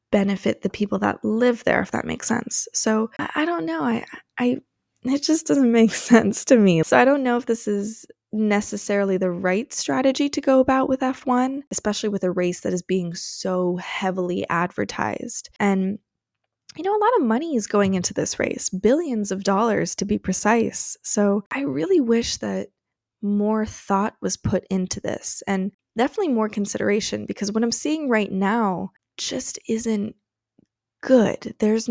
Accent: American